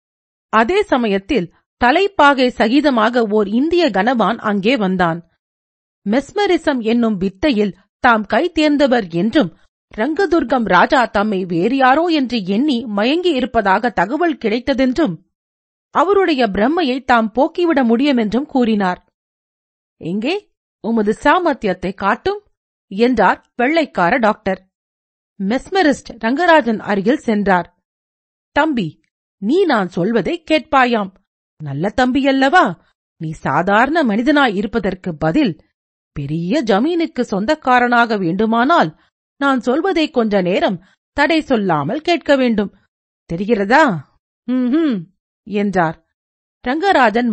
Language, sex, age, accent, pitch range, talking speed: Tamil, female, 40-59, native, 195-290 Hz, 90 wpm